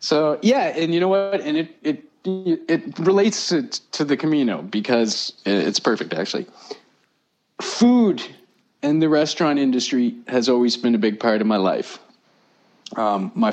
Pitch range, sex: 115-160 Hz, male